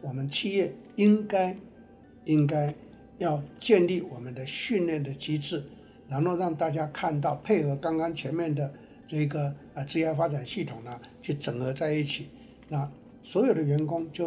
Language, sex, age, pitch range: Chinese, male, 60-79, 145-185 Hz